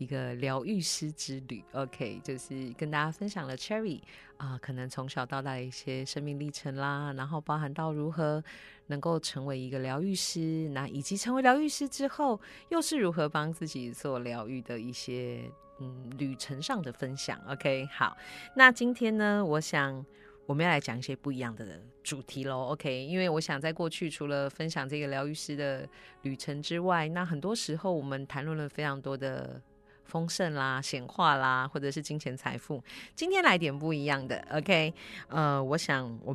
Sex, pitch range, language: female, 130-165 Hz, Chinese